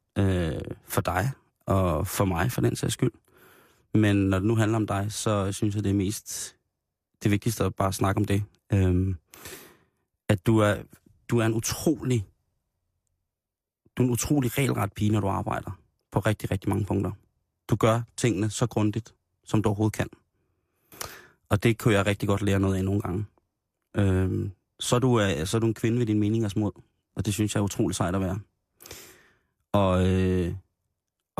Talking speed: 175 wpm